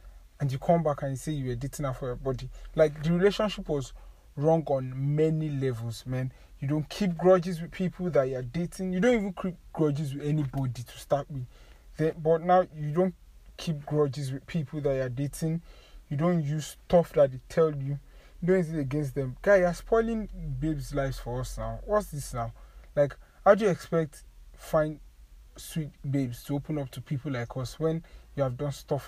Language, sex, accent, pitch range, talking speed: English, male, Nigerian, 125-160 Hz, 200 wpm